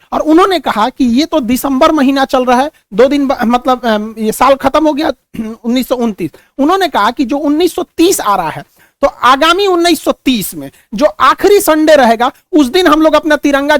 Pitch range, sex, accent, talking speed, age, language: 245-310 Hz, male, native, 185 wpm, 50-69, Hindi